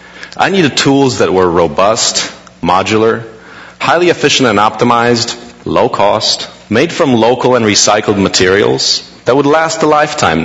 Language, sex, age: English, male, 40-59